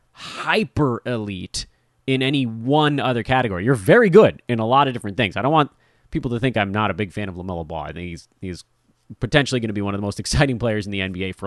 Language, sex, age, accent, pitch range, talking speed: English, male, 30-49, American, 110-140 Hz, 250 wpm